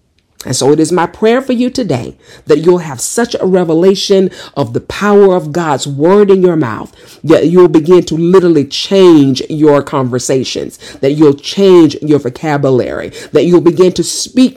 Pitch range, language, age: 140-190 Hz, English, 50-69